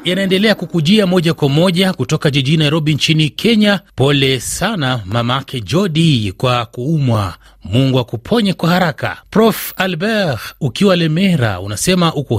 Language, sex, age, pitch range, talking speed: Swahili, male, 30-49, 125-180 Hz, 125 wpm